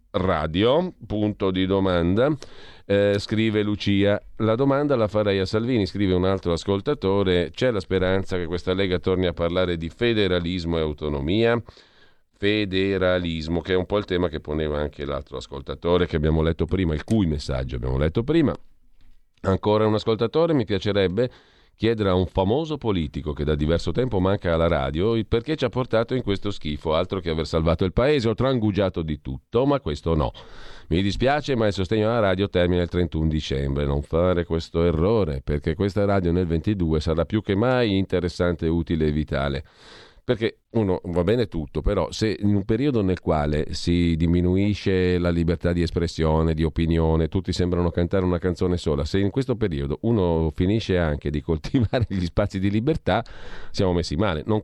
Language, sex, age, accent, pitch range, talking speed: Italian, male, 40-59, native, 80-105 Hz, 175 wpm